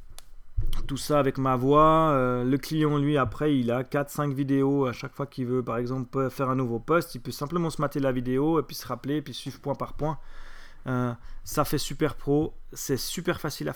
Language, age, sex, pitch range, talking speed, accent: French, 30-49, male, 115-140 Hz, 225 wpm, French